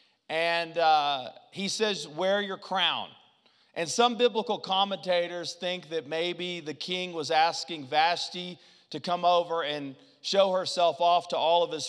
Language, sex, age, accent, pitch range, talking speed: English, male, 40-59, American, 165-220 Hz, 150 wpm